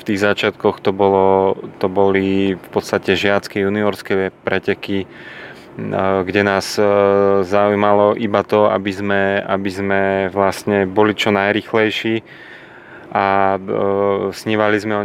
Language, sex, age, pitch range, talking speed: Slovak, male, 30-49, 100-105 Hz, 115 wpm